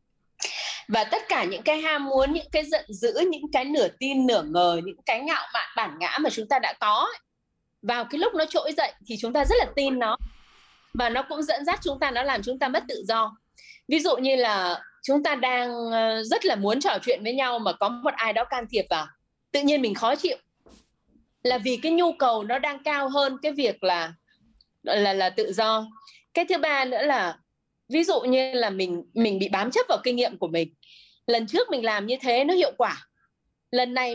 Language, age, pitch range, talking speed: Vietnamese, 20-39, 235-315 Hz, 225 wpm